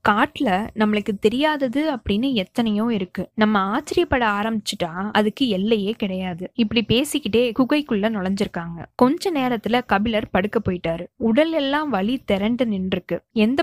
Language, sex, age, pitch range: Tamil, female, 20-39, 205-260 Hz